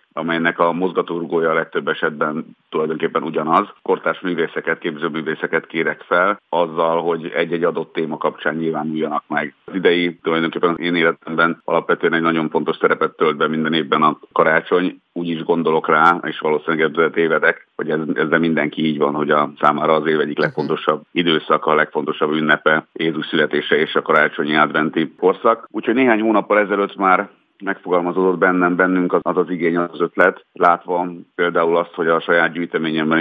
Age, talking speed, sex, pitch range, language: 50-69, 165 wpm, male, 80-95 Hz, Hungarian